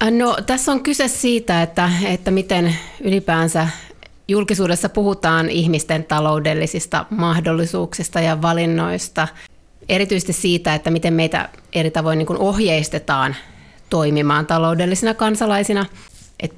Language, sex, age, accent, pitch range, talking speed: Finnish, female, 30-49, native, 165-185 Hz, 100 wpm